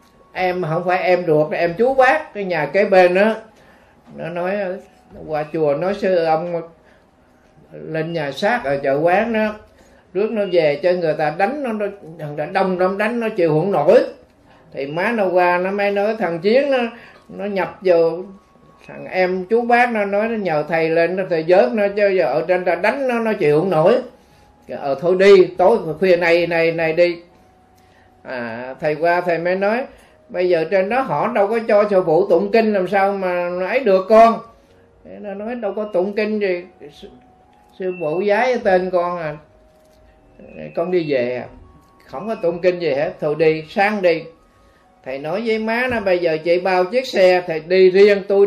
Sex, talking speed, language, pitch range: male, 195 wpm, Vietnamese, 165-200 Hz